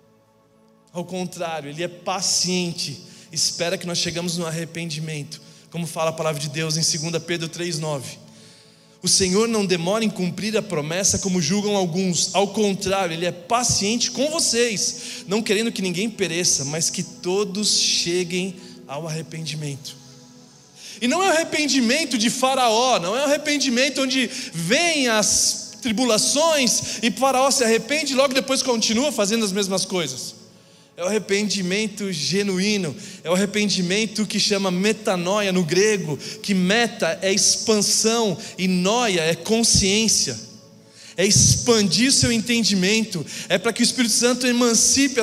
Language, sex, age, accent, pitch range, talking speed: Portuguese, male, 20-39, Brazilian, 175-235 Hz, 145 wpm